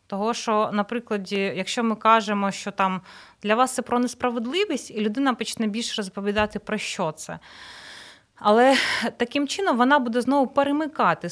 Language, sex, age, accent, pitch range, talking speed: Ukrainian, female, 30-49, native, 200-245 Hz, 150 wpm